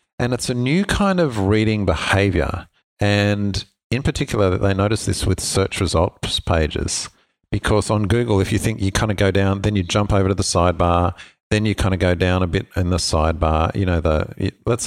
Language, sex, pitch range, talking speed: English, male, 85-105 Hz, 205 wpm